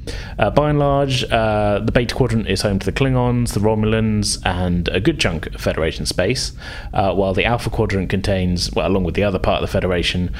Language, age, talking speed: English, 30-49, 210 wpm